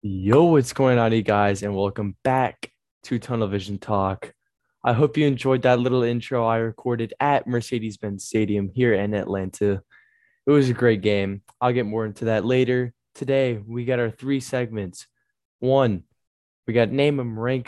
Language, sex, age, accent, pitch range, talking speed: English, male, 10-29, American, 105-125 Hz, 175 wpm